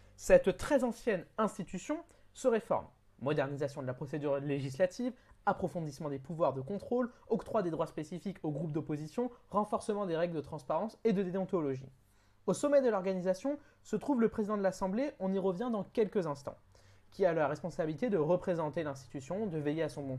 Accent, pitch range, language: French, 145-210 Hz, French